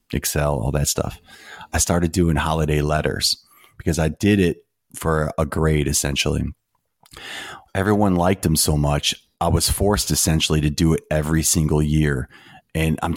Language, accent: English, American